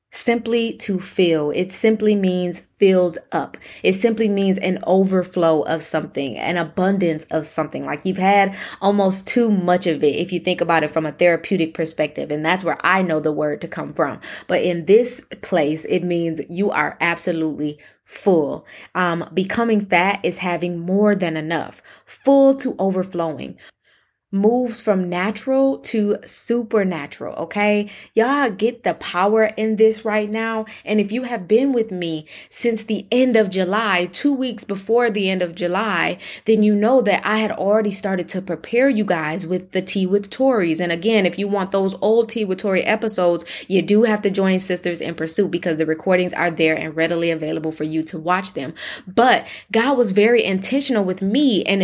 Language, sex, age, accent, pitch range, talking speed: English, female, 20-39, American, 170-220 Hz, 180 wpm